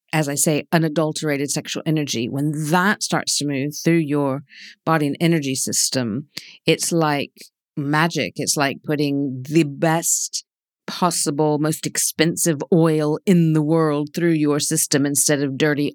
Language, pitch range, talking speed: English, 140-160 Hz, 145 wpm